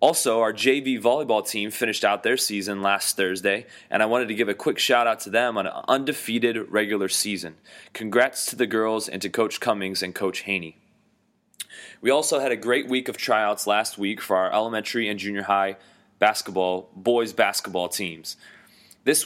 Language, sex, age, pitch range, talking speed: English, male, 20-39, 100-120 Hz, 185 wpm